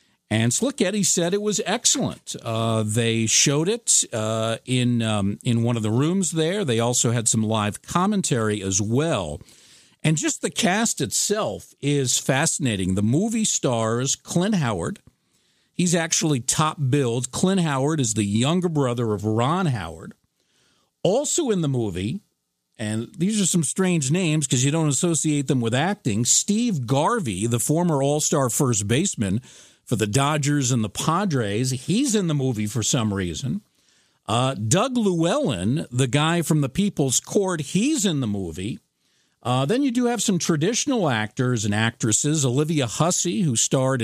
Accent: American